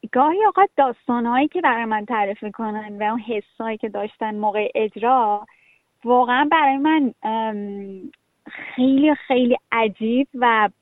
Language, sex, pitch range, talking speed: Persian, female, 215-270 Hz, 120 wpm